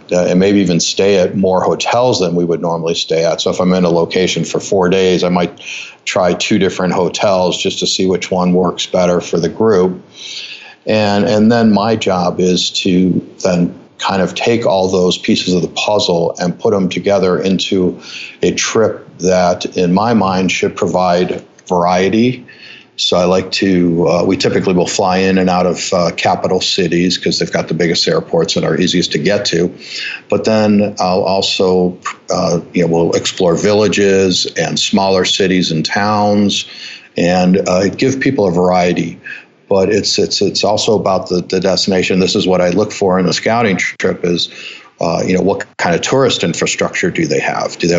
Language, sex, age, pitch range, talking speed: English, male, 50-69, 90-95 Hz, 190 wpm